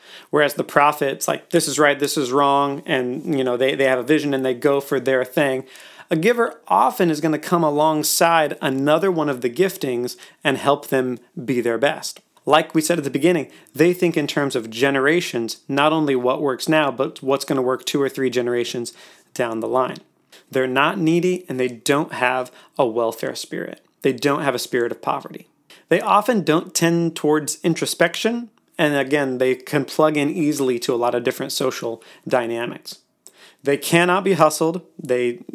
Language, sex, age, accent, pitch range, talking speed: English, male, 30-49, American, 130-165 Hz, 190 wpm